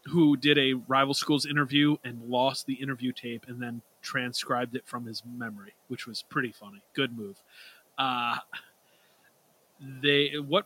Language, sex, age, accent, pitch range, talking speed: English, male, 30-49, American, 120-145 Hz, 150 wpm